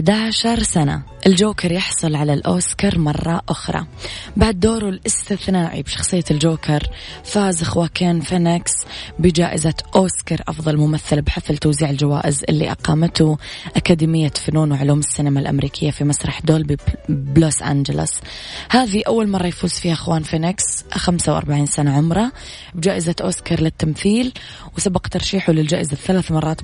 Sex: female